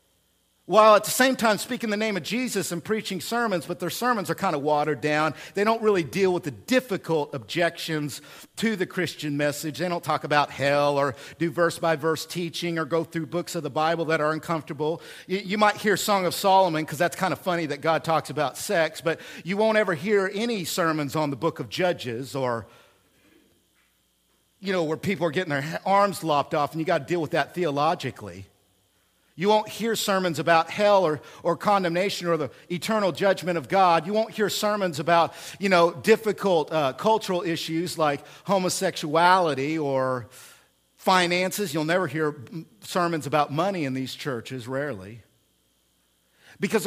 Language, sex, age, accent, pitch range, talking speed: English, male, 50-69, American, 150-200 Hz, 180 wpm